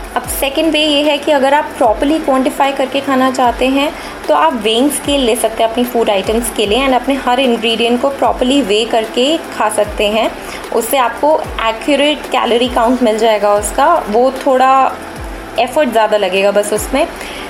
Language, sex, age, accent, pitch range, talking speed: Hindi, female, 20-39, native, 225-275 Hz, 180 wpm